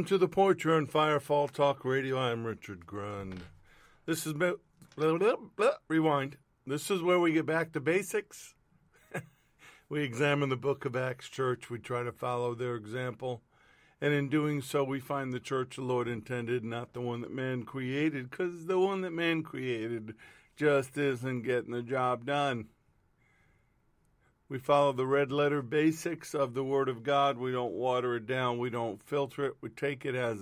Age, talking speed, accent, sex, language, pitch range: 50-69, 165 wpm, American, male, English, 125-145 Hz